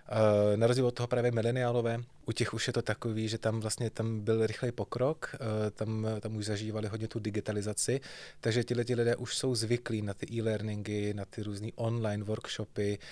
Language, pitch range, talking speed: Czech, 105-120 Hz, 185 wpm